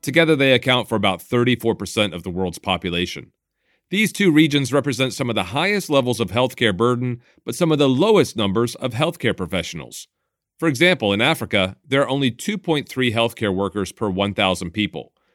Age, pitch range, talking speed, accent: 40-59, 100-135 Hz, 170 wpm, American